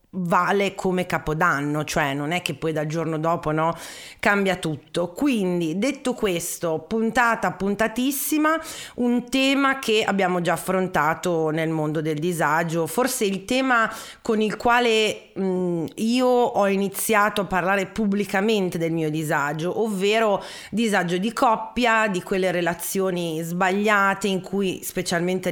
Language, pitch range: Italian, 170-205 Hz